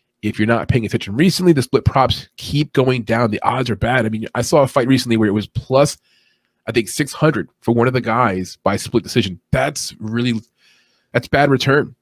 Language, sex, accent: English, male, American